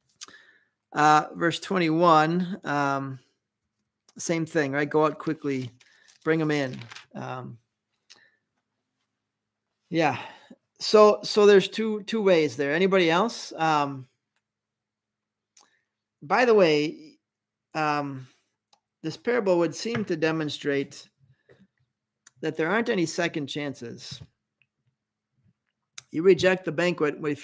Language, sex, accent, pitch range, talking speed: English, male, American, 135-180 Hz, 105 wpm